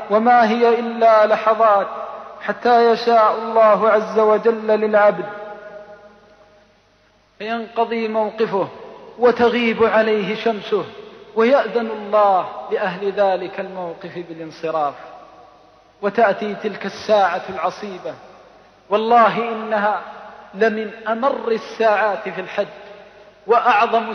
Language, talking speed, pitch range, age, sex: Arabic, 80 wpm, 210-255 Hz, 40-59, male